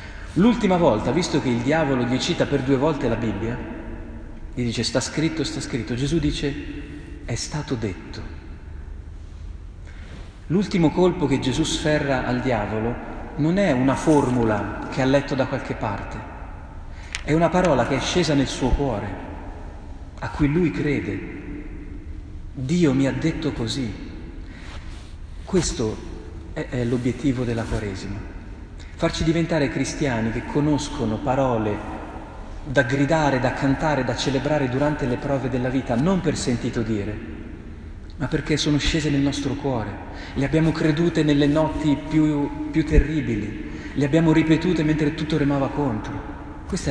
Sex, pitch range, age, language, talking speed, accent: male, 105-150 Hz, 40-59, Italian, 140 wpm, native